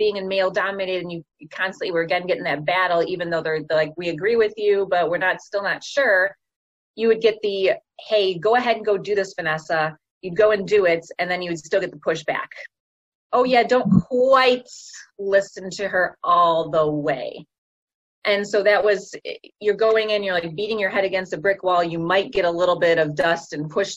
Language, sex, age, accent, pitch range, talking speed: English, female, 30-49, American, 180-230 Hz, 220 wpm